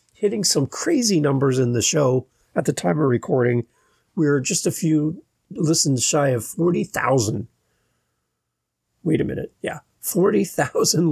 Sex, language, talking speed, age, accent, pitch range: male, English, 135 wpm, 30-49, American, 130-170 Hz